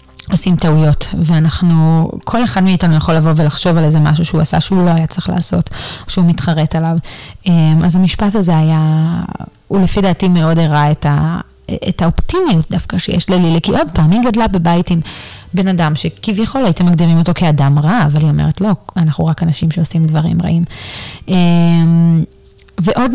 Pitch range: 160-180 Hz